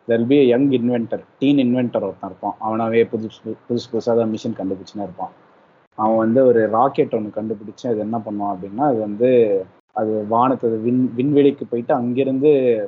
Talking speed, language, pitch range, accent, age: 130 wpm, Tamil, 110-135 Hz, native, 20-39